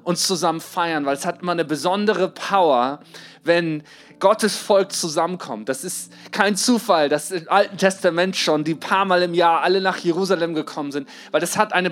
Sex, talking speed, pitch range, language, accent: male, 190 wpm, 160-200 Hz, German, German